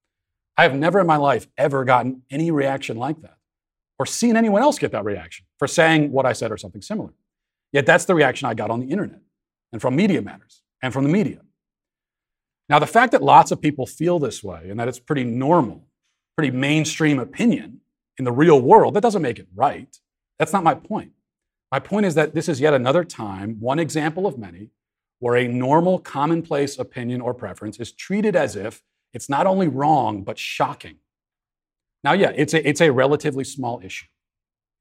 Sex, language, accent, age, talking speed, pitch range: male, English, American, 40-59, 200 wpm, 120-160 Hz